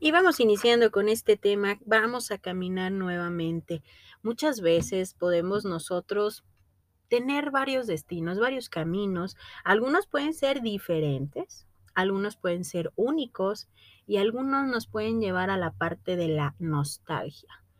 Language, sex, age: Spanish, female, 30-49